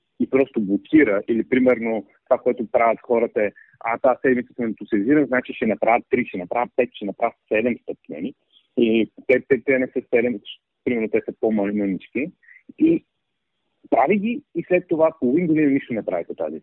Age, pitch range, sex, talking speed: 40-59, 115-170 Hz, male, 170 wpm